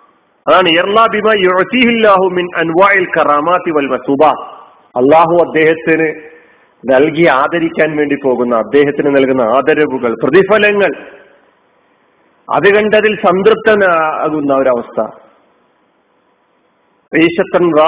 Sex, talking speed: male, 45 wpm